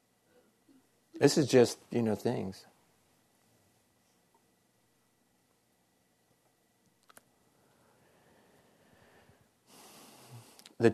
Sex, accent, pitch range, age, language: male, American, 95-110 Hz, 60-79, English